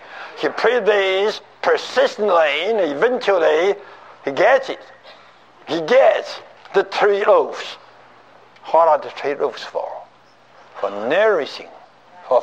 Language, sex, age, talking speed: English, male, 60-79, 110 wpm